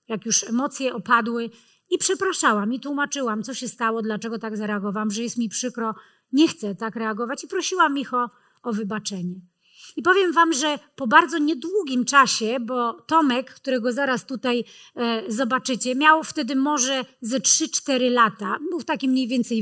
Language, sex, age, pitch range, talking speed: Polish, female, 30-49, 225-280 Hz, 160 wpm